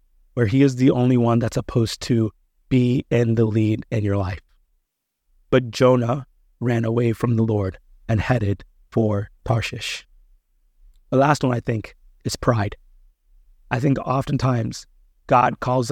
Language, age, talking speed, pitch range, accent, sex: English, 30-49, 145 wpm, 115-135 Hz, American, male